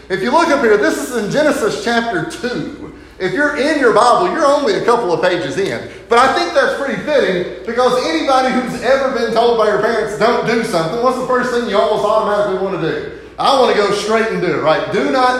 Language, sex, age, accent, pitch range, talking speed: English, male, 30-49, American, 180-240 Hz, 240 wpm